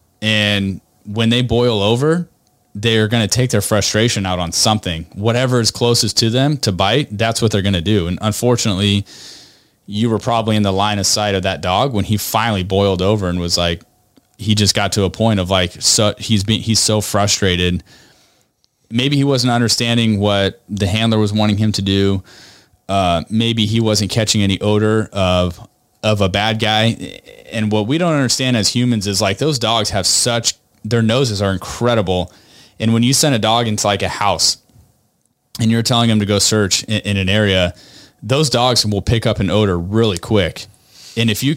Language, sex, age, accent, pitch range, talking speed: English, male, 30-49, American, 100-115 Hz, 195 wpm